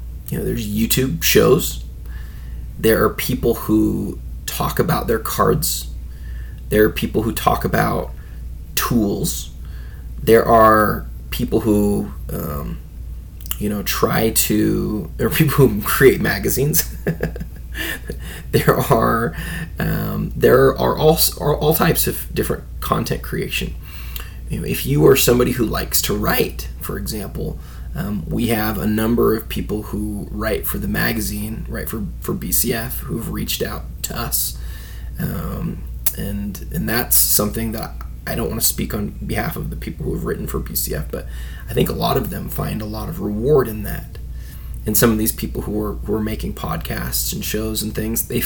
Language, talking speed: English, 160 wpm